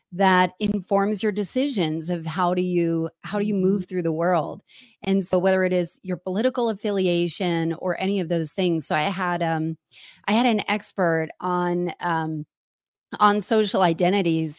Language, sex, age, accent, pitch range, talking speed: English, female, 30-49, American, 175-210 Hz, 170 wpm